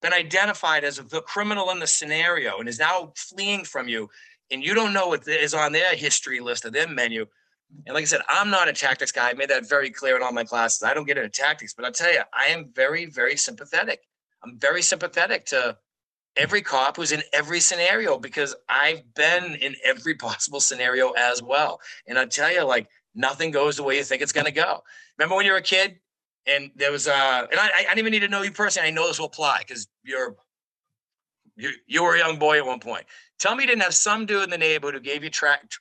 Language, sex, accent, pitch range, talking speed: English, male, American, 140-200 Hz, 240 wpm